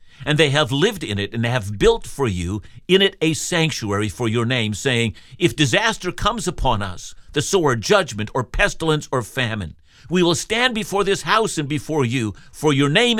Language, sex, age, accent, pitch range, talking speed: English, male, 50-69, American, 110-155 Hz, 200 wpm